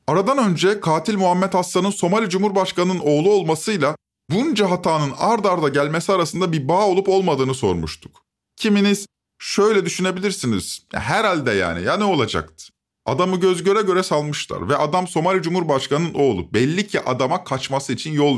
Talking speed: 145 wpm